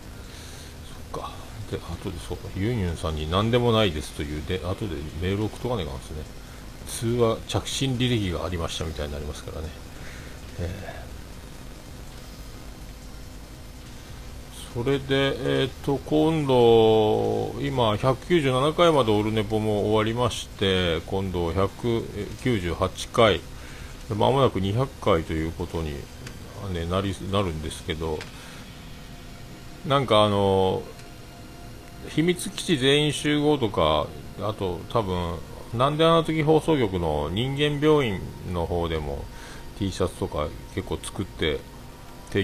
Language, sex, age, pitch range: Japanese, male, 50-69, 85-125 Hz